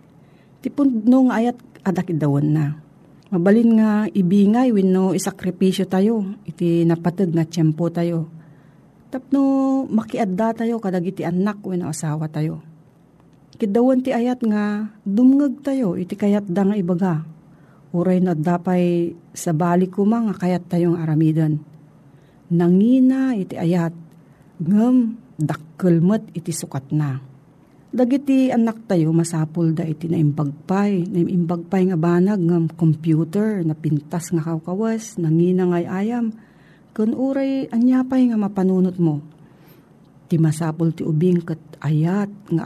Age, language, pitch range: 40-59, Filipino, 160-210 Hz